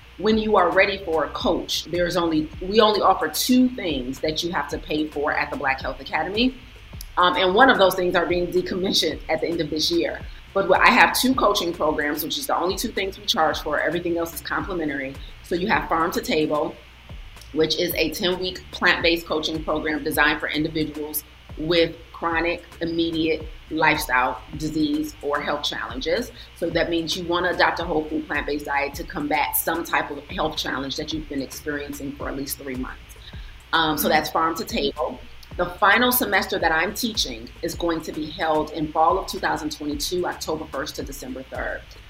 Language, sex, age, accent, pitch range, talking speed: English, female, 30-49, American, 150-175 Hz, 195 wpm